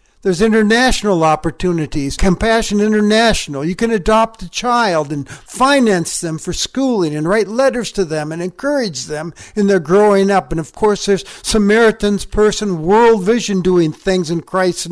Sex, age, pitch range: male, 60-79, 145-200 Hz